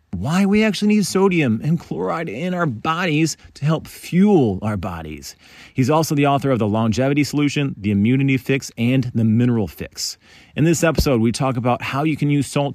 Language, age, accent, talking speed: English, 30-49, American, 195 wpm